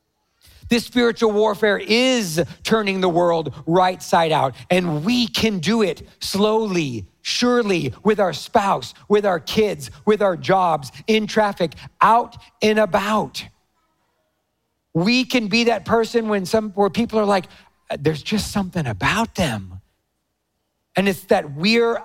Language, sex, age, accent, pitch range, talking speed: English, male, 40-59, American, 165-210 Hz, 140 wpm